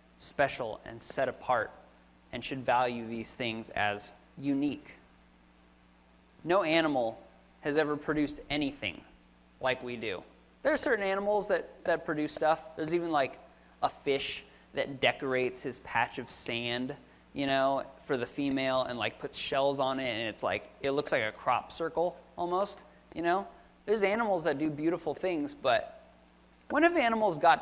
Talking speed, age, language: 160 wpm, 20-39, English